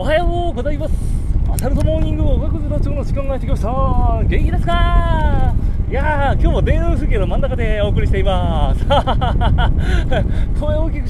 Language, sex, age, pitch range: Japanese, male, 30-49, 80-100 Hz